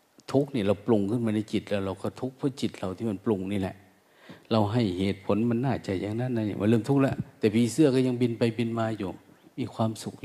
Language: Thai